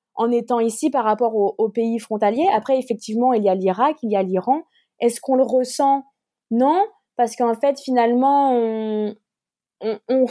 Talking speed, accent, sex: 180 wpm, French, female